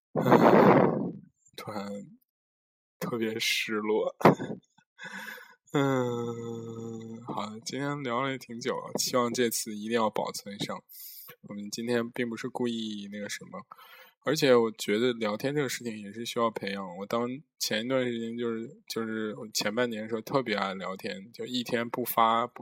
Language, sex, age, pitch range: Chinese, male, 20-39, 110-135 Hz